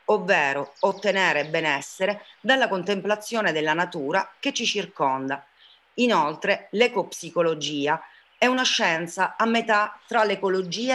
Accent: native